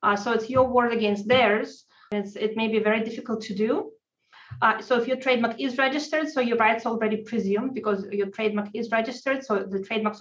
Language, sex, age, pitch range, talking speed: English, female, 20-39, 200-245 Hz, 205 wpm